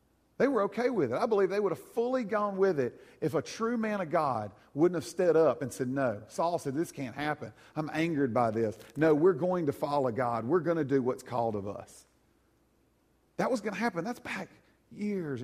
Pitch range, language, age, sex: 150-215 Hz, English, 40-59, male